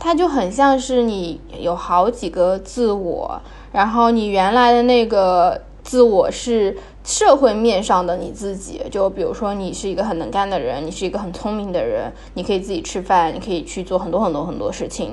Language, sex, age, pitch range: Chinese, female, 10-29, 185-240 Hz